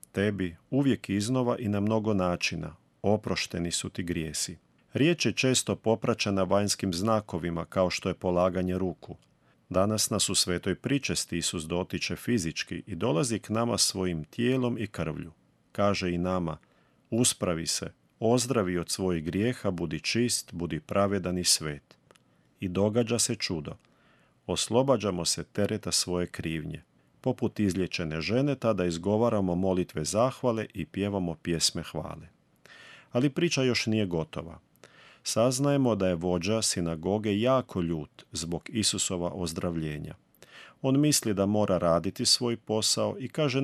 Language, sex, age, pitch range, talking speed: Croatian, male, 40-59, 90-115 Hz, 135 wpm